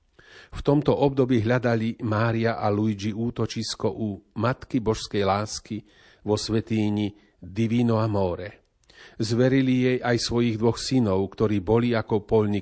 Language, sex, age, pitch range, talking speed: Slovak, male, 40-59, 105-120 Hz, 125 wpm